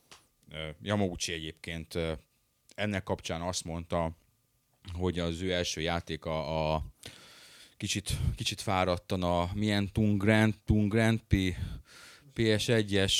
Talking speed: 100 wpm